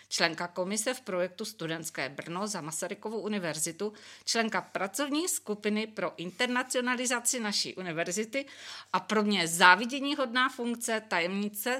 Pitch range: 175-220 Hz